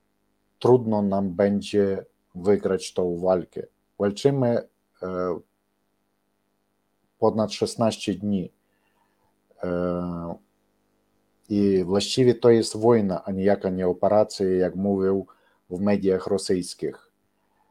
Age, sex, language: 50-69, male, Polish